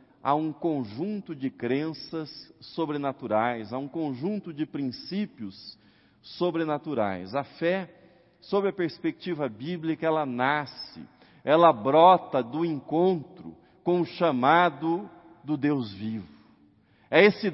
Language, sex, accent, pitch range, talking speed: Portuguese, male, Brazilian, 130-180 Hz, 110 wpm